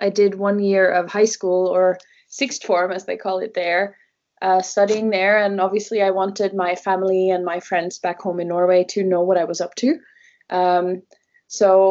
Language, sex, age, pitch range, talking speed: English, female, 20-39, 185-220 Hz, 200 wpm